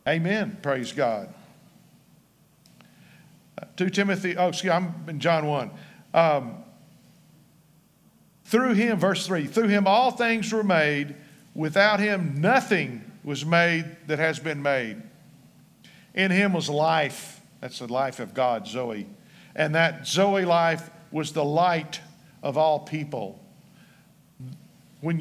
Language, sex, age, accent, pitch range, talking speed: English, male, 50-69, American, 140-175 Hz, 130 wpm